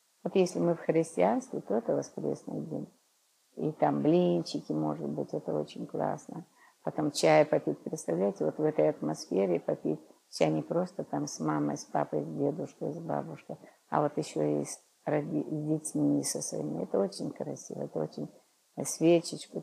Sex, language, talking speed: female, Russian, 160 wpm